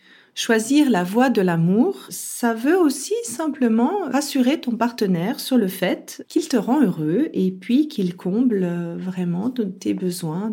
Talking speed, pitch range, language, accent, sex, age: 150 wpm, 190-250 Hz, French, French, female, 40-59